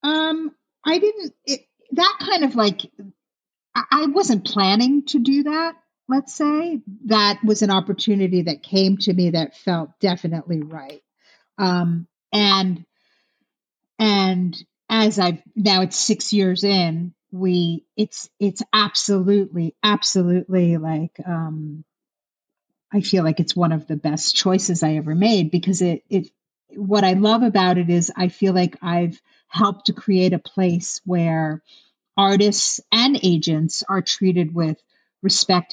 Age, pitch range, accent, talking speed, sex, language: 50-69, 165-200 Hz, American, 140 wpm, female, English